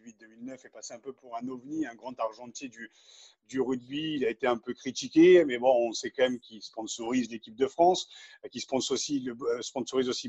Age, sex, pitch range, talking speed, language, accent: 40-59, male, 125-175 Hz, 215 wpm, French, French